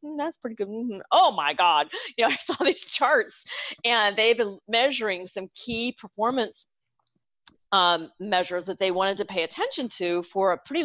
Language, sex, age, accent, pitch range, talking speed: English, female, 40-59, American, 175-215 Hz, 190 wpm